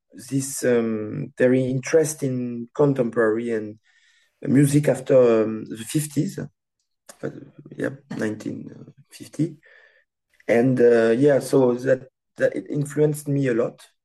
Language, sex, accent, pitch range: English, male, French, 120-150 Hz